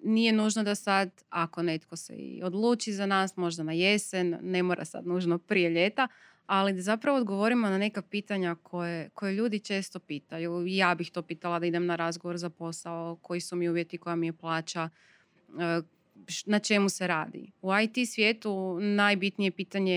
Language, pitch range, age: Croatian, 175-210 Hz, 20-39